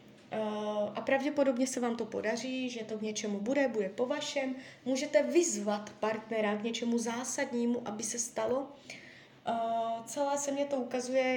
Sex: female